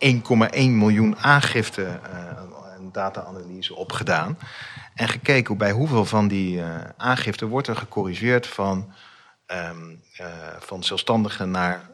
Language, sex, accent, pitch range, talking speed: Dutch, male, Dutch, 95-115 Hz, 120 wpm